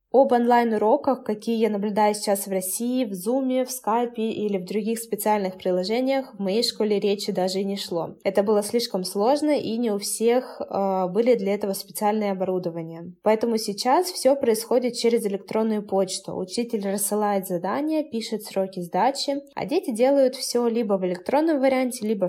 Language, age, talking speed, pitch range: Russian, 20-39, 165 wpm, 195-255 Hz